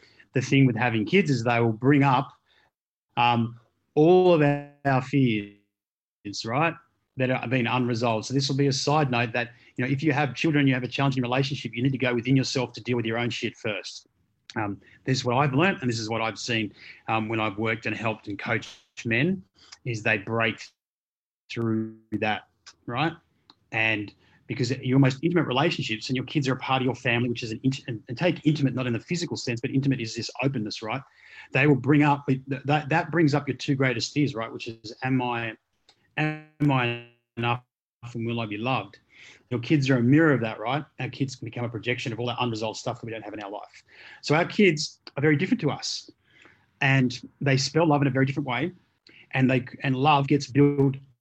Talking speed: 220 wpm